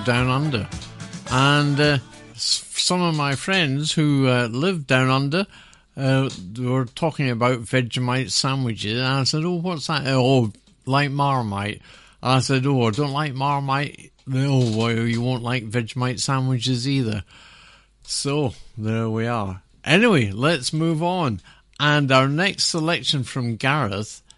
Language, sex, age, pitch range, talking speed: English, male, 50-69, 125-155 Hz, 140 wpm